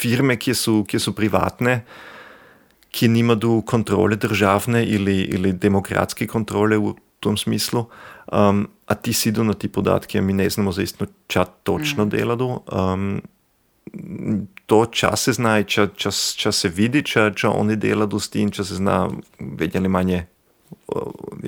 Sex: male